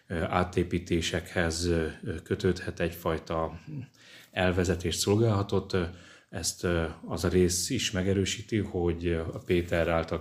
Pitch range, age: 85-95 Hz, 30-49